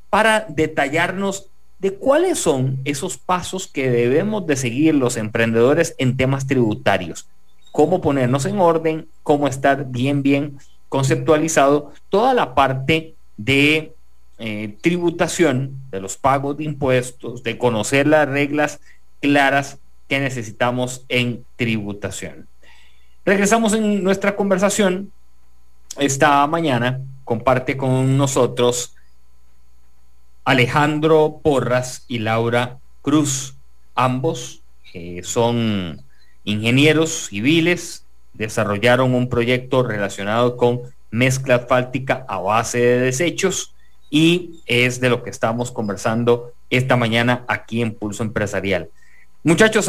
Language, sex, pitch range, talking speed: English, male, 115-155 Hz, 105 wpm